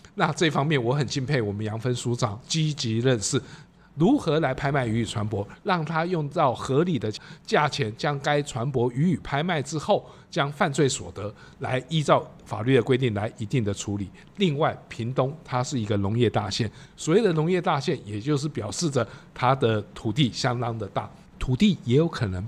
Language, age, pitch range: Chinese, 50-69, 120-155 Hz